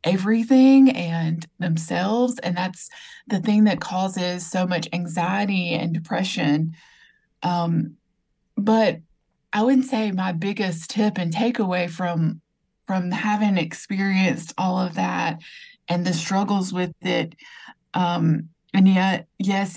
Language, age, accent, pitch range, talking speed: English, 20-39, American, 175-215 Hz, 120 wpm